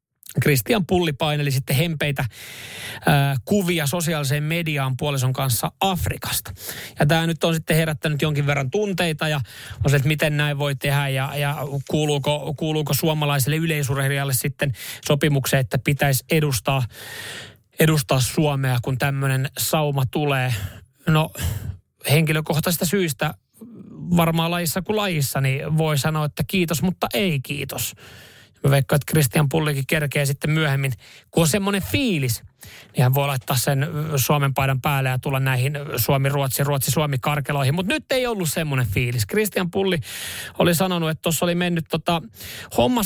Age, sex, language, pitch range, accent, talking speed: 30-49, male, Finnish, 135-165 Hz, native, 140 wpm